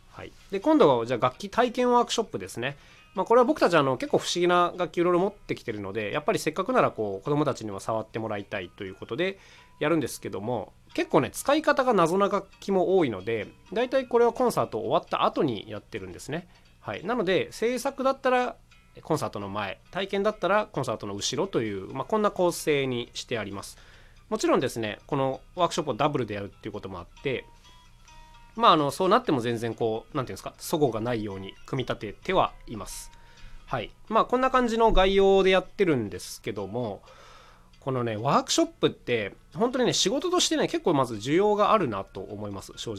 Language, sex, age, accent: Japanese, male, 20-39, native